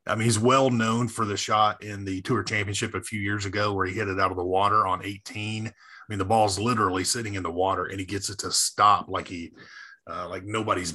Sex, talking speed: male, 240 wpm